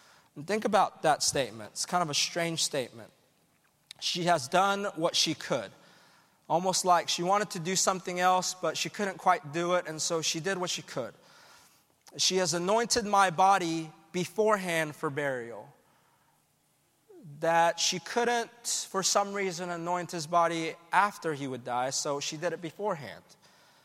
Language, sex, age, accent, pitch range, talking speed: English, male, 30-49, American, 160-200 Hz, 160 wpm